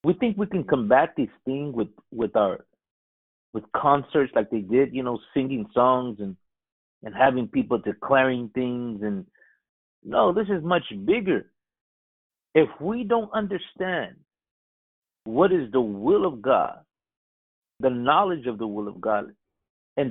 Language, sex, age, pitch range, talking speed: English, male, 50-69, 130-195 Hz, 145 wpm